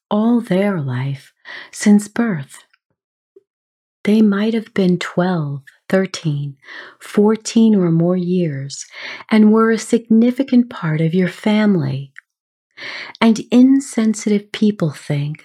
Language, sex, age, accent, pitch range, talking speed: English, female, 40-59, American, 155-215 Hz, 105 wpm